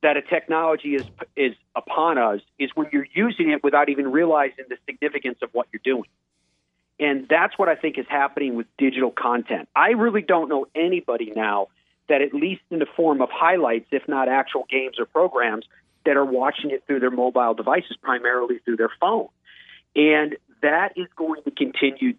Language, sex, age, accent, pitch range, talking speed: English, male, 40-59, American, 125-160 Hz, 185 wpm